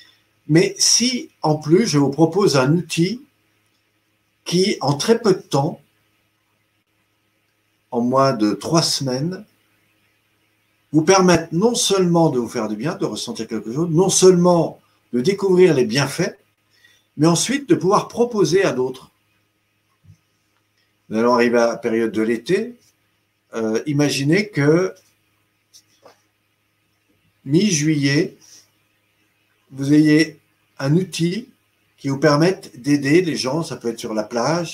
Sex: male